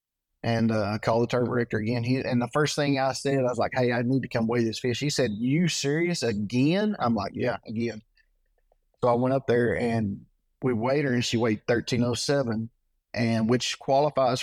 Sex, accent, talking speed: male, American, 210 wpm